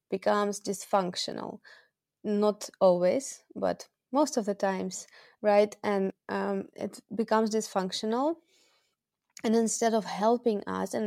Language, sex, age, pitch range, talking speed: English, female, 20-39, 190-220 Hz, 115 wpm